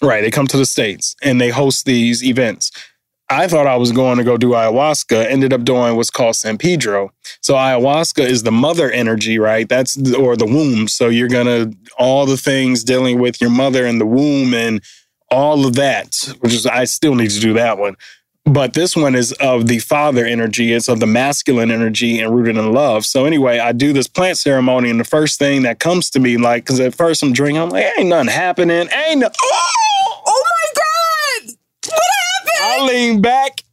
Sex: male